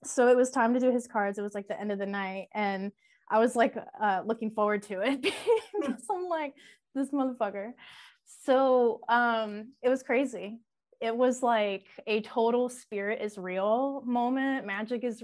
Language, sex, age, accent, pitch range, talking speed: English, female, 20-39, American, 205-255 Hz, 180 wpm